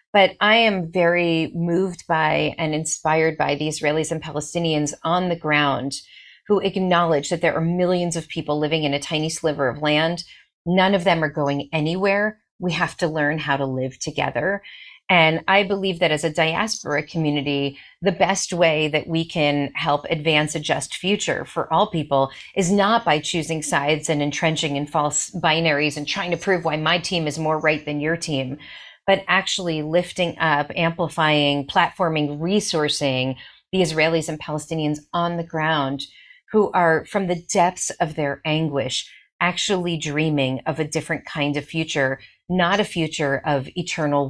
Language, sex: English, female